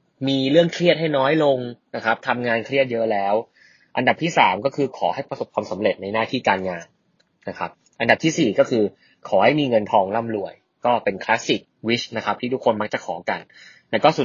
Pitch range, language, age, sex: 105-150 Hz, Thai, 20-39, male